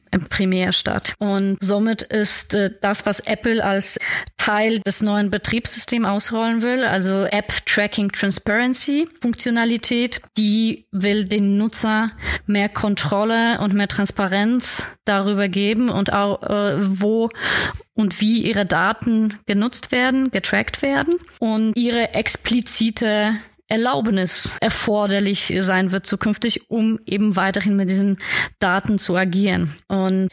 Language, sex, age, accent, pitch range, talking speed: German, female, 20-39, German, 205-230 Hz, 120 wpm